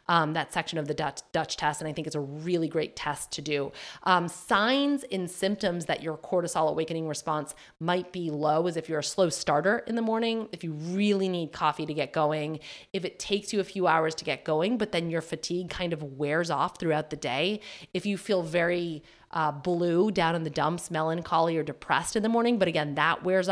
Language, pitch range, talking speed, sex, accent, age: English, 155-190 Hz, 225 wpm, female, American, 30-49